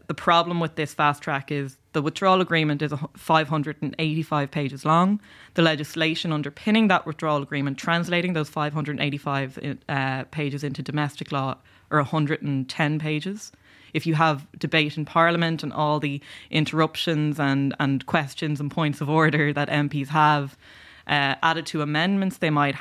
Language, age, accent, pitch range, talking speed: English, 20-39, Irish, 140-160 Hz, 155 wpm